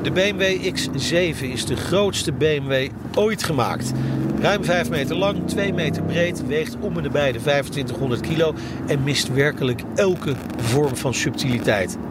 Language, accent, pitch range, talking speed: Dutch, Dutch, 125-170 Hz, 150 wpm